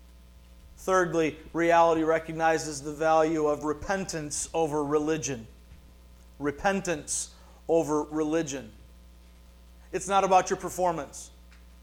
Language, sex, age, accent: English, male, 40-59, American